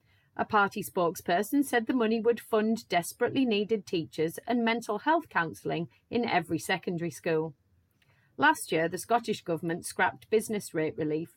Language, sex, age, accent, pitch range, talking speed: English, female, 30-49, British, 165-235 Hz, 150 wpm